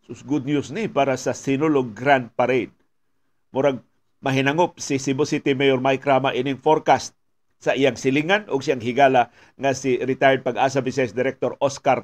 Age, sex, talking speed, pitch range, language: 50-69, male, 155 wpm, 130-155 Hz, Filipino